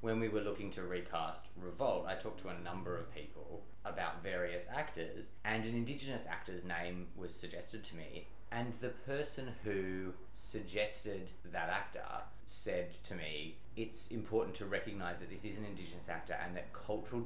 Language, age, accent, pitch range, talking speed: English, 20-39, Australian, 90-110 Hz, 170 wpm